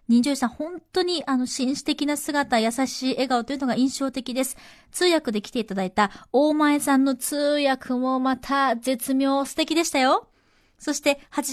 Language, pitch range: Japanese, 230-310 Hz